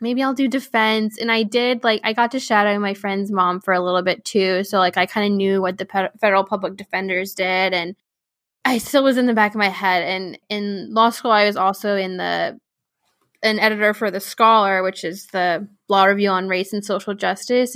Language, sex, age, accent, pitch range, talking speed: English, female, 10-29, American, 185-220 Hz, 225 wpm